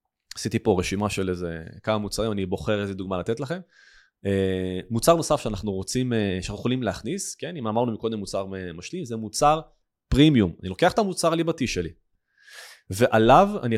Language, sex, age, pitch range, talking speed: Hebrew, male, 20-39, 95-130 Hz, 160 wpm